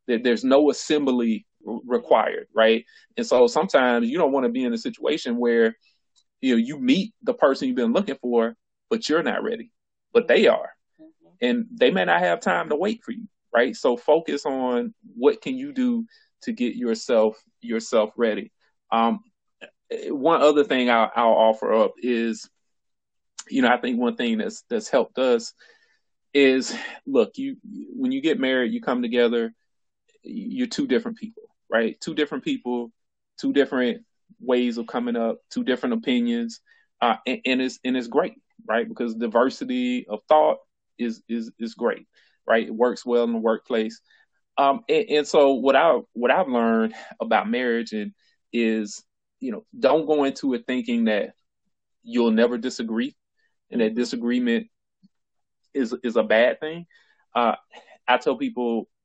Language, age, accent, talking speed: English, 30-49, American, 165 wpm